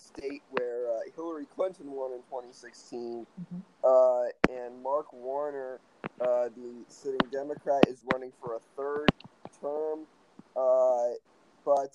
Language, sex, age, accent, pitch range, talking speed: English, male, 20-39, American, 125-155 Hz, 120 wpm